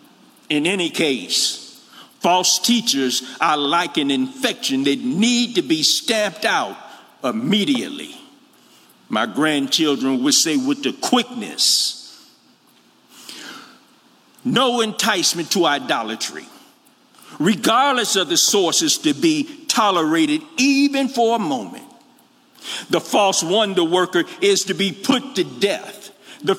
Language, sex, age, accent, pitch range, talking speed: English, male, 50-69, American, 195-280 Hz, 110 wpm